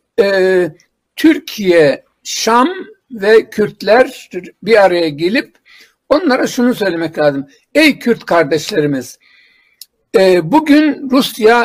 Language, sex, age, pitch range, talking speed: Turkish, male, 60-79, 185-270 Hz, 80 wpm